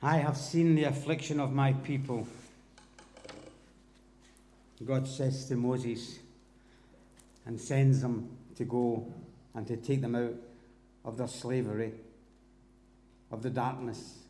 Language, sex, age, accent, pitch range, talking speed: English, male, 60-79, British, 120-135 Hz, 120 wpm